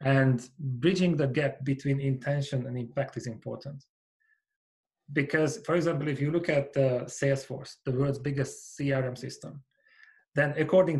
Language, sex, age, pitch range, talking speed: English, male, 30-49, 135-165 Hz, 140 wpm